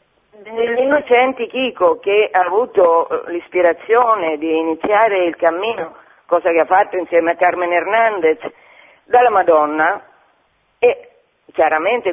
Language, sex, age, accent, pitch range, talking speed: Italian, female, 50-69, native, 190-285 Hz, 115 wpm